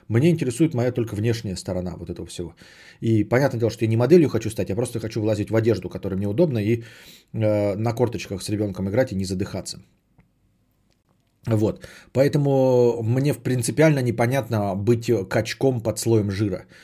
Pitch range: 105-125 Hz